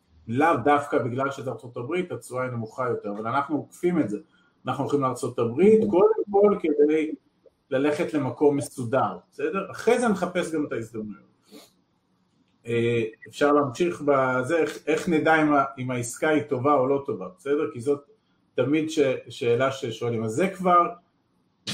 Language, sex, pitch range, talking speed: Hebrew, male, 125-160 Hz, 145 wpm